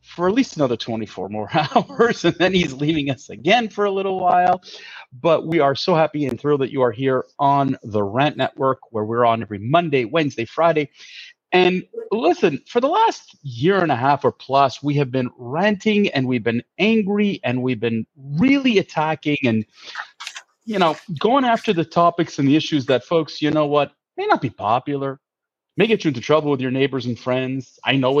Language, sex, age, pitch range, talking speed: English, male, 30-49, 130-180 Hz, 200 wpm